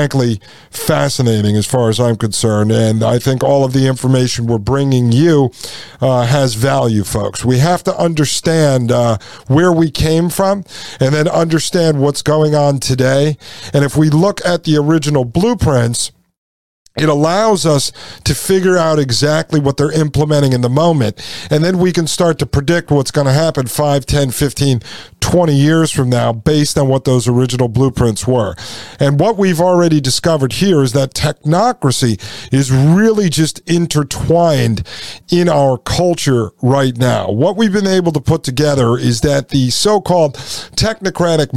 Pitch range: 125-160 Hz